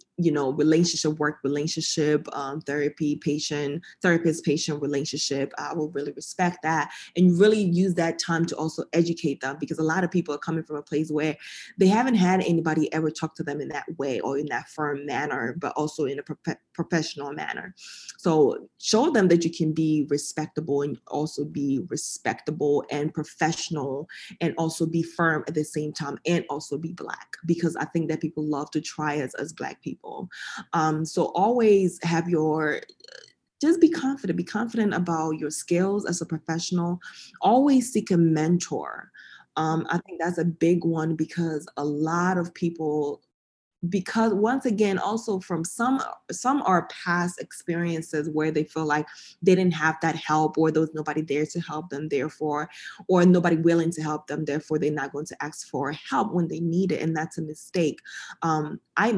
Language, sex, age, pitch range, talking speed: English, female, 20-39, 150-175 Hz, 185 wpm